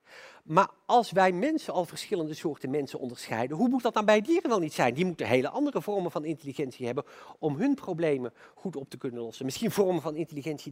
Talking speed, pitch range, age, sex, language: 215 wpm, 170-260 Hz, 40-59, male, Dutch